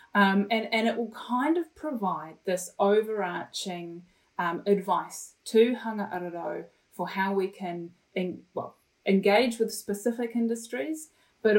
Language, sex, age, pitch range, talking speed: English, female, 30-49, 175-220 Hz, 135 wpm